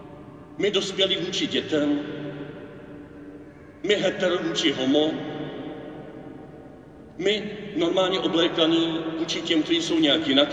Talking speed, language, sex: 90 wpm, Czech, male